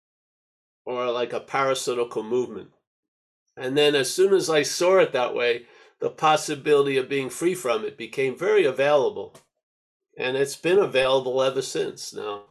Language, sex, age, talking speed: English, male, 50-69, 155 wpm